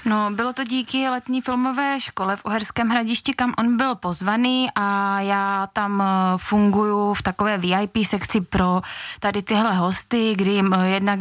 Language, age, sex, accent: Czech, 20-39, female, native